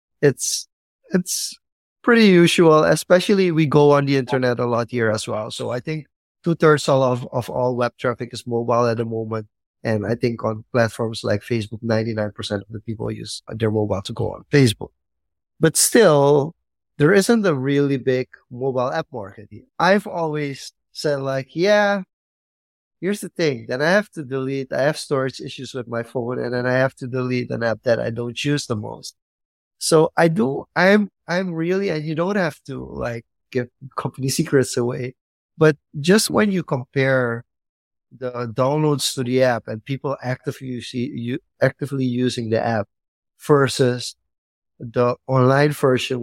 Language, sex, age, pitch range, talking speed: English, male, 30-49, 115-150 Hz, 165 wpm